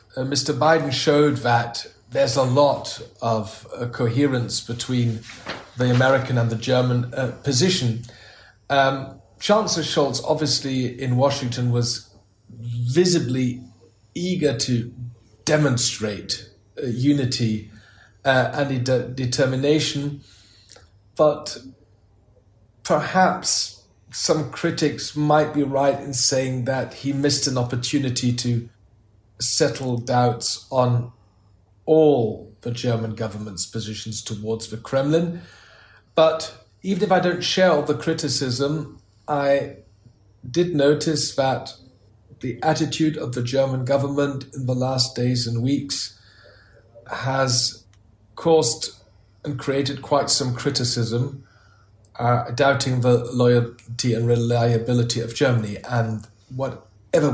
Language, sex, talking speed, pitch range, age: English, male, 110 wpm, 115-140 Hz, 40-59